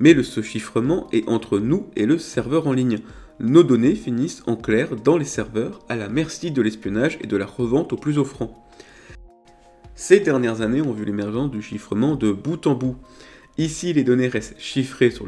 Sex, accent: male, French